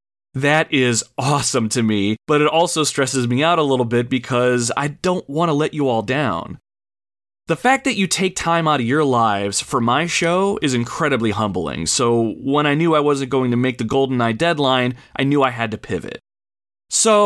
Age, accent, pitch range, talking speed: 30-49, American, 115-155 Hz, 200 wpm